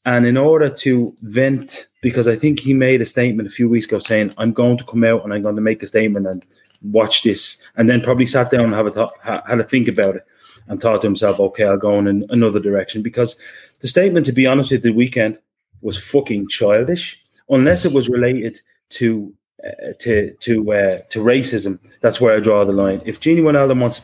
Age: 30-49